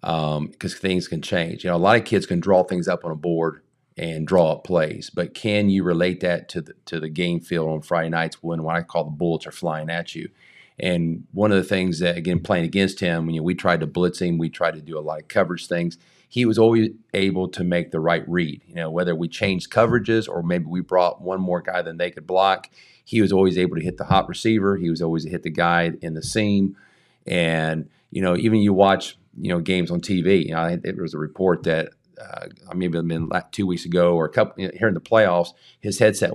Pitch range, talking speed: 85-95 Hz, 255 wpm